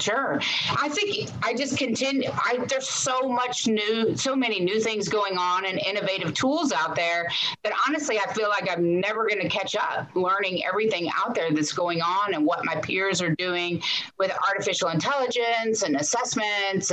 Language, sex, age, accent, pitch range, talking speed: English, female, 30-49, American, 160-225 Hz, 180 wpm